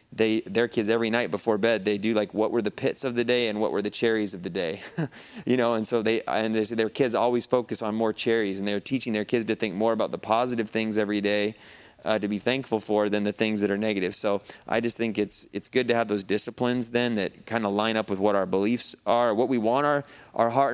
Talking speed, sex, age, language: 265 wpm, male, 30-49, English